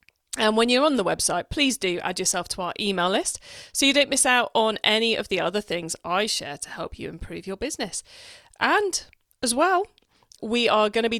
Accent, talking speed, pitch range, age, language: British, 220 wpm, 180-245 Hz, 40-59, English